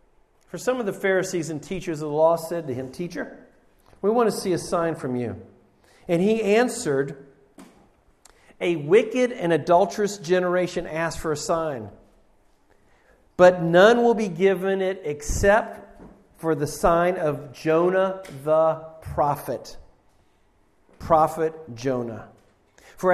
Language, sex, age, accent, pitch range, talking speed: English, male, 50-69, American, 150-195 Hz, 130 wpm